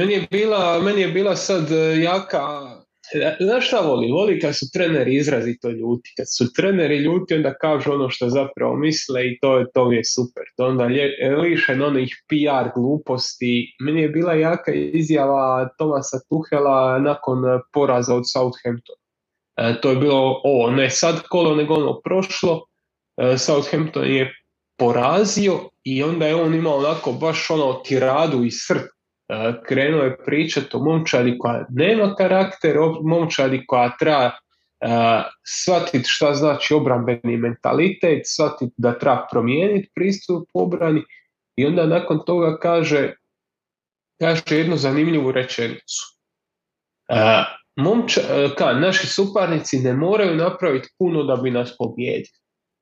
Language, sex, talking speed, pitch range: Croatian, male, 135 wpm, 130-165 Hz